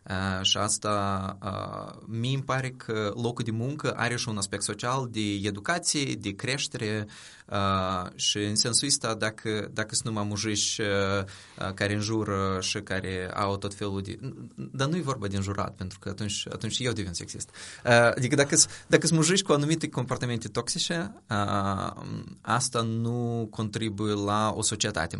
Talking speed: 150 wpm